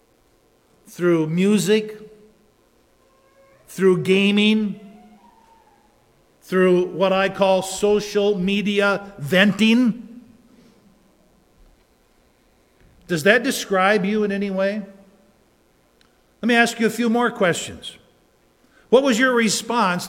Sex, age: male, 50-69